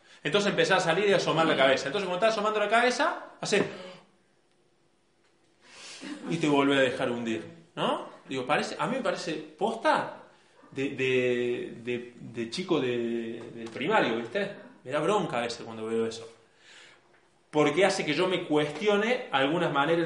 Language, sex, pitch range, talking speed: Spanish, male, 120-165 Hz, 160 wpm